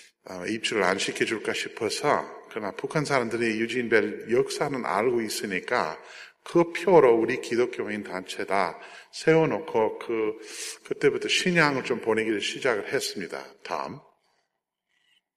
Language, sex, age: Korean, male, 50-69